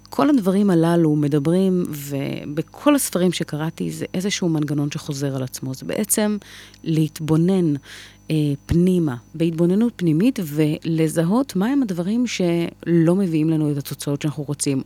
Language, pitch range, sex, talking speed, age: Hebrew, 145-180 Hz, female, 115 wpm, 30-49